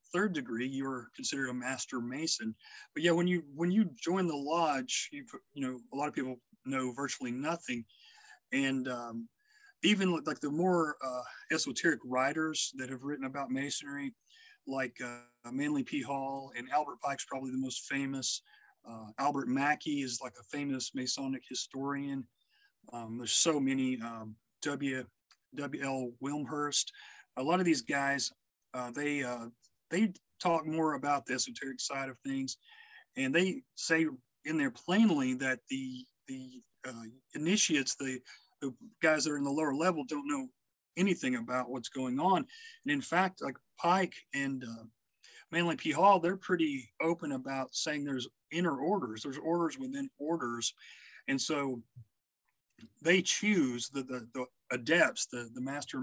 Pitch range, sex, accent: 130-180 Hz, male, American